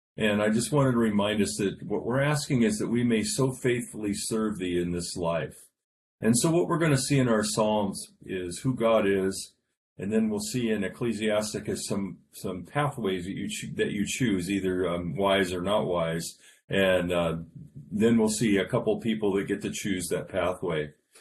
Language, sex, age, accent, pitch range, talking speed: English, male, 40-59, American, 95-120 Hz, 195 wpm